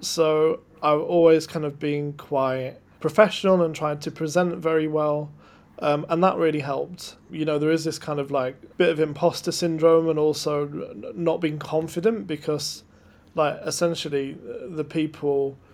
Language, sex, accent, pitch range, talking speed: English, male, British, 140-160 Hz, 155 wpm